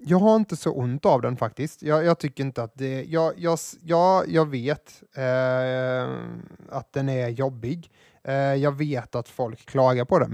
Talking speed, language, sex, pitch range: 180 wpm, Swedish, male, 130-165 Hz